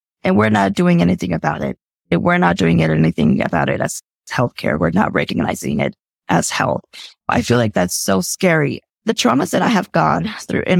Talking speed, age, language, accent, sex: 195 wpm, 20-39, English, American, female